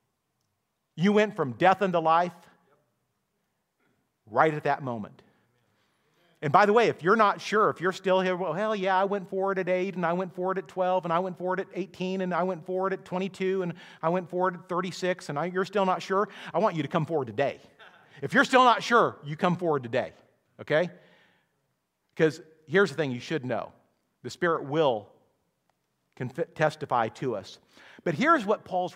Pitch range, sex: 145-190 Hz, male